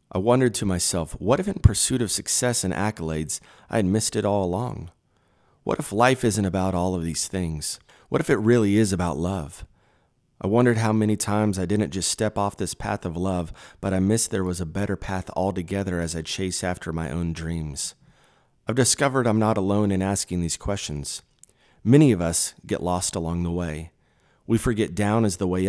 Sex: male